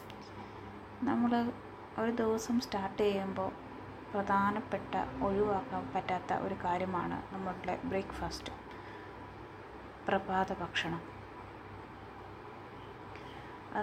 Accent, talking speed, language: native, 65 wpm, Malayalam